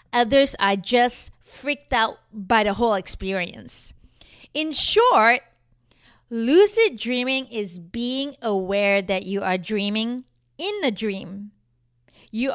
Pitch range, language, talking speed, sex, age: 205-290 Hz, English, 115 wpm, female, 20-39